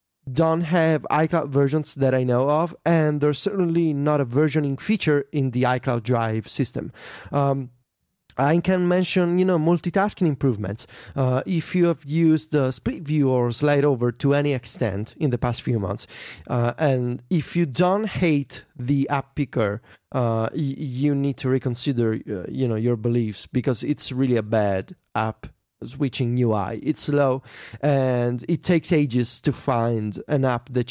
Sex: male